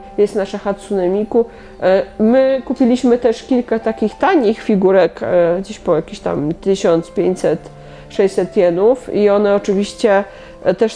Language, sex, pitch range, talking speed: Polish, female, 180-205 Hz, 110 wpm